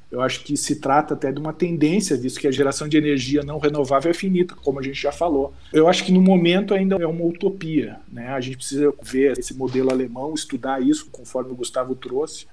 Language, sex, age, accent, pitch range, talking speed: Portuguese, male, 40-59, Brazilian, 135-160 Hz, 225 wpm